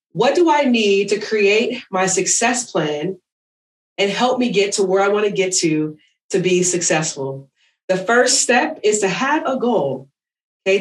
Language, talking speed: English, 180 wpm